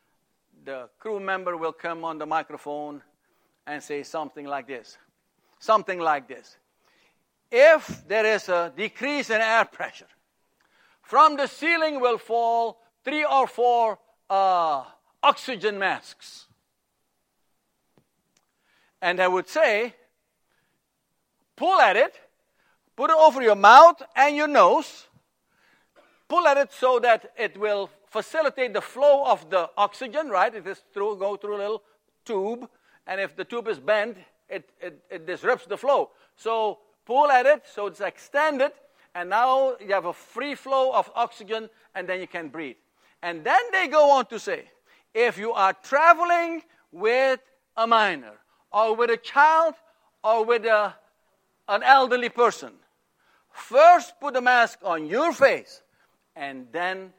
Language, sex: English, male